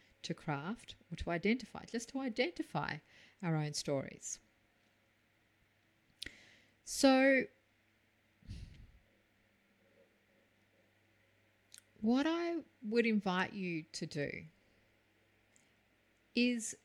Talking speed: 70 wpm